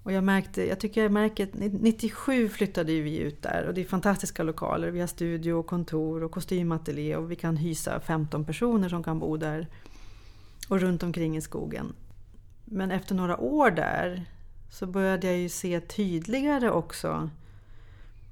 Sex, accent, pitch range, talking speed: female, native, 155-195 Hz, 165 wpm